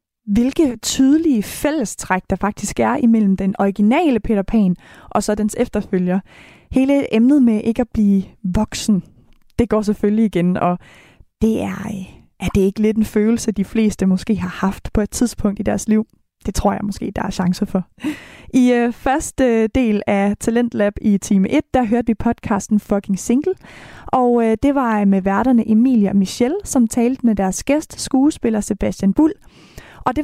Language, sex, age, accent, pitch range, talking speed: Danish, female, 20-39, native, 205-260 Hz, 170 wpm